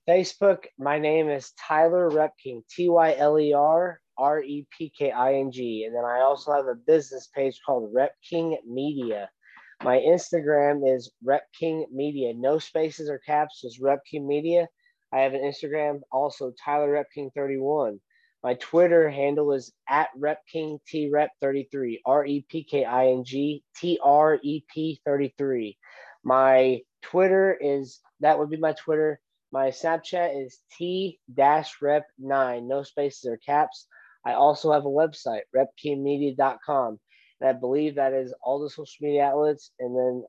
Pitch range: 135-160 Hz